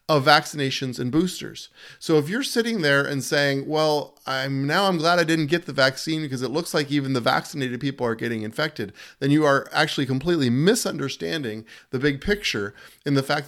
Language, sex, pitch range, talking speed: English, male, 120-150 Hz, 195 wpm